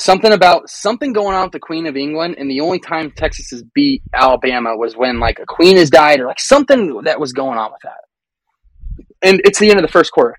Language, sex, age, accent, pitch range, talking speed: English, male, 20-39, American, 130-180 Hz, 250 wpm